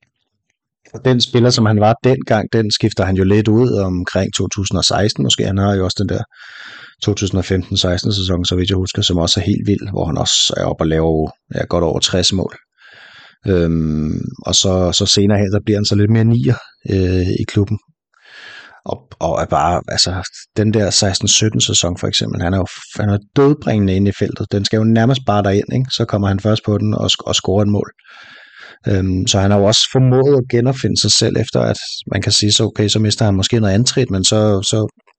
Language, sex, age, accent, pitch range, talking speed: Danish, male, 30-49, native, 95-110 Hz, 215 wpm